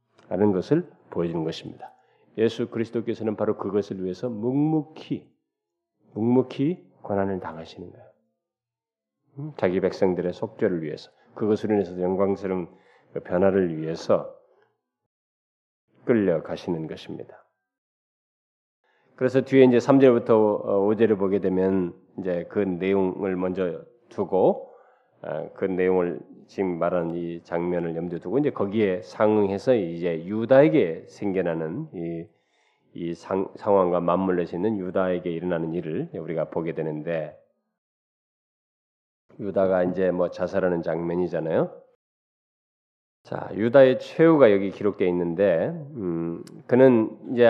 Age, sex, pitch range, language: 40-59, male, 90-120 Hz, Korean